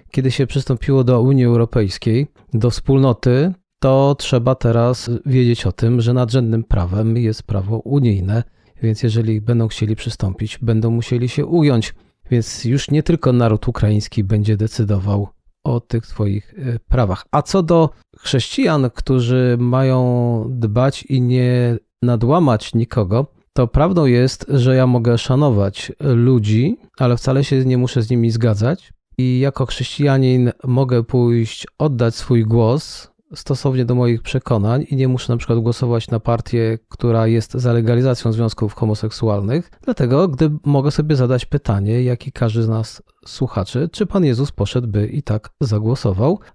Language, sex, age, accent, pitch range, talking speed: Polish, male, 40-59, native, 115-135 Hz, 145 wpm